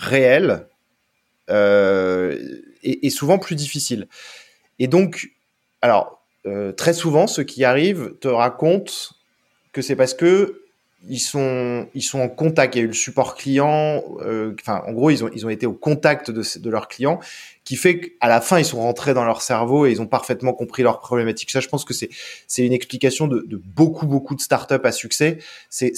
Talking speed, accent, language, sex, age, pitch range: 195 wpm, French, French, male, 20-39, 115-155 Hz